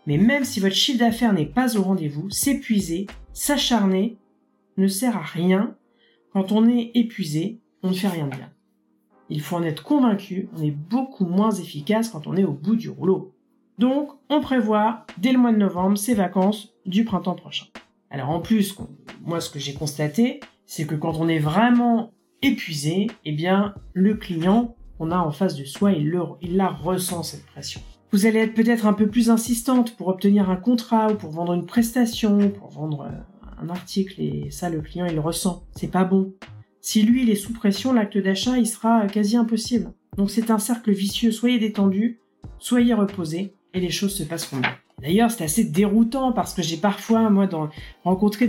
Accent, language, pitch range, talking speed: French, French, 175-230 Hz, 195 wpm